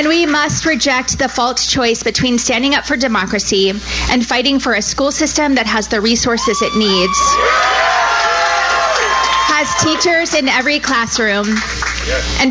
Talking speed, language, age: 145 wpm, English, 30-49